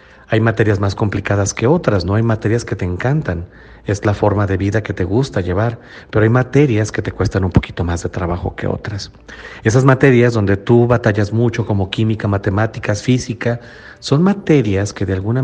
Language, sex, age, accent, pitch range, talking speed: Spanish, male, 40-59, Mexican, 100-125 Hz, 190 wpm